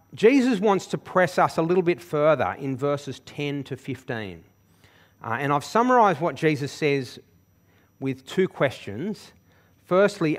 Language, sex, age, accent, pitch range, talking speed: English, male, 40-59, Australian, 100-160 Hz, 145 wpm